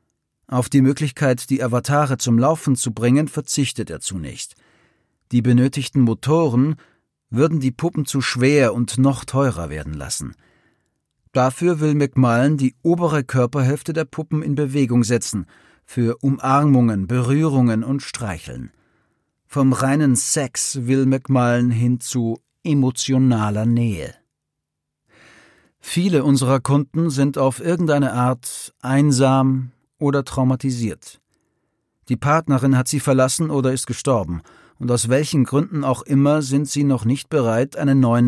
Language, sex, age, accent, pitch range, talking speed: German, male, 40-59, German, 120-145 Hz, 125 wpm